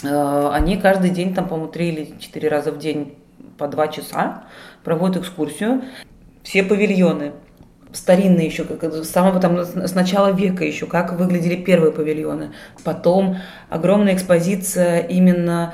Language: Russian